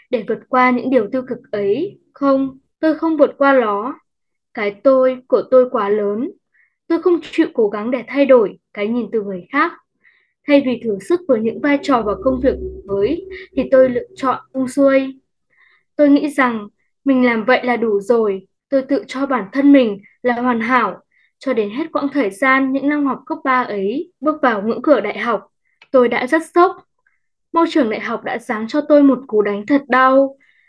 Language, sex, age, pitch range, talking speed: Vietnamese, female, 10-29, 240-295 Hz, 205 wpm